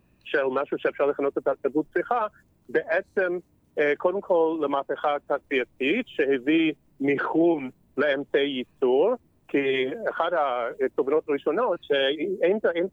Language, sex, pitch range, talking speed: Hebrew, male, 140-185 Hz, 100 wpm